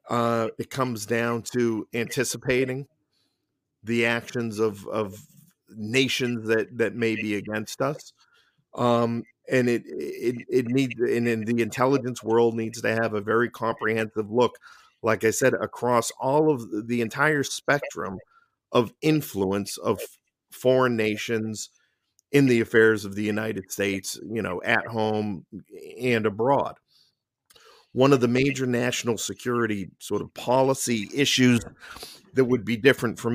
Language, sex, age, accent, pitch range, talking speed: English, male, 50-69, American, 110-130 Hz, 135 wpm